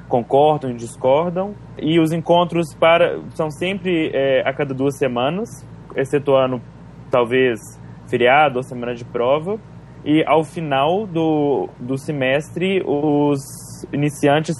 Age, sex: 20-39, male